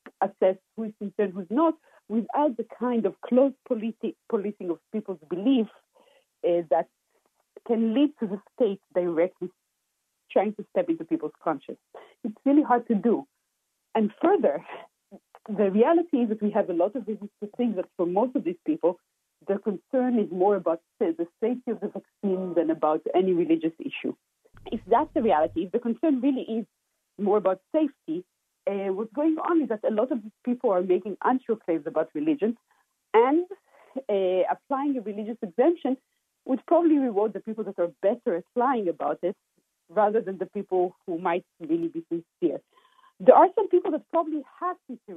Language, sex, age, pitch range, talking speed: English, female, 50-69, 190-280 Hz, 180 wpm